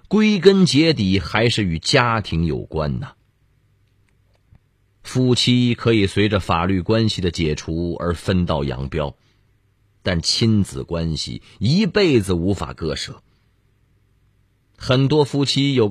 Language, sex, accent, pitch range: Chinese, male, native, 95-120 Hz